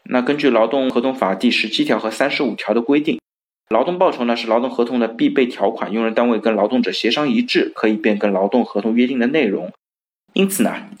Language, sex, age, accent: Chinese, male, 20-39, native